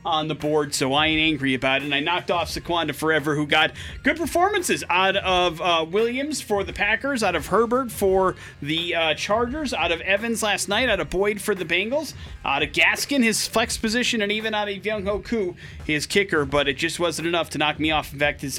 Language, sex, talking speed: English, male, 225 wpm